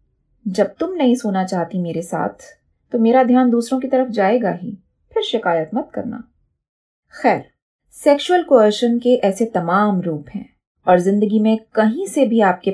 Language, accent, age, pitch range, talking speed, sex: Hindi, native, 30-49, 185-235 Hz, 150 wpm, female